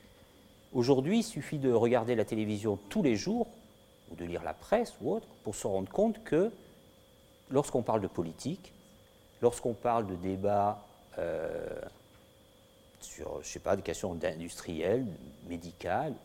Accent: French